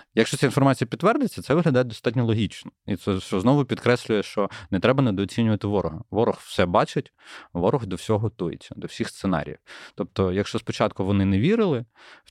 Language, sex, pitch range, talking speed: Ukrainian, male, 90-115 Hz, 170 wpm